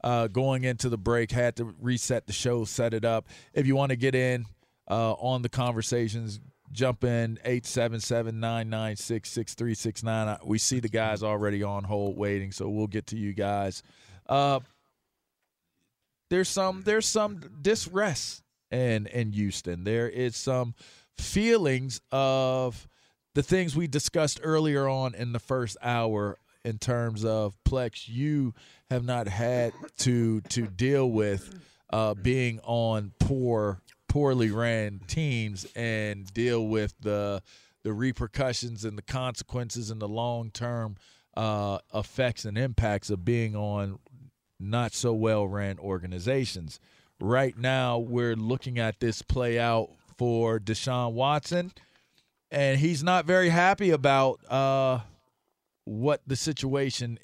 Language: English